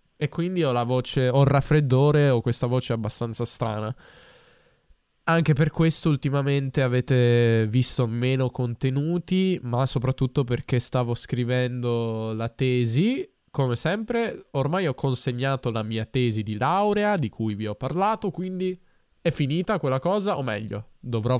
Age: 10-29